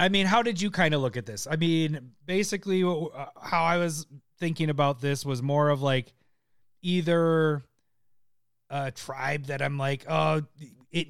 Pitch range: 125-160 Hz